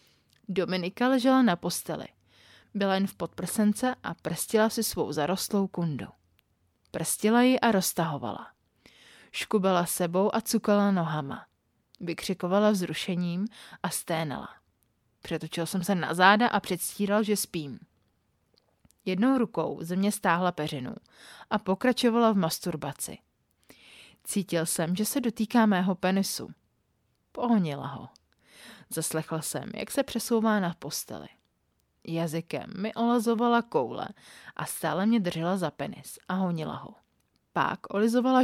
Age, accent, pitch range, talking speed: 30-49, native, 165-220 Hz, 120 wpm